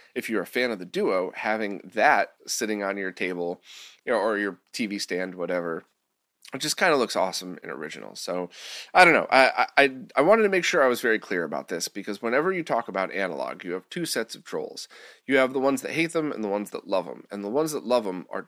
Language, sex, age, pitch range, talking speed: English, male, 30-49, 100-150 Hz, 250 wpm